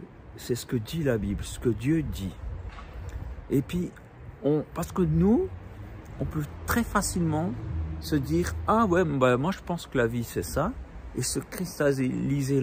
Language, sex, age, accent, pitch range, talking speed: French, male, 60-79, French, 90-145 Hz, 170 wpm